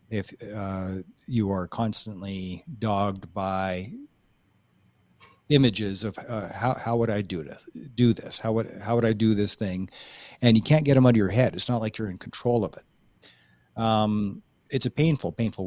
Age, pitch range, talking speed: 40-59, 100-120 Hz, 185 wpm